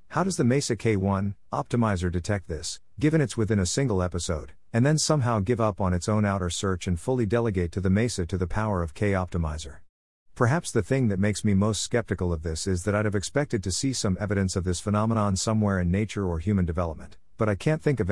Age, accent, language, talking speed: 50-69, American, English, 230 wpm